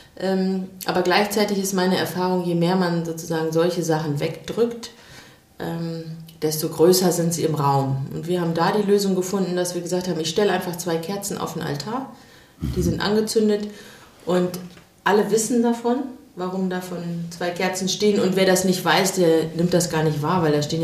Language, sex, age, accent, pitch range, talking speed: German, female, 30-49, German, 155-185 Hz, 180 wpm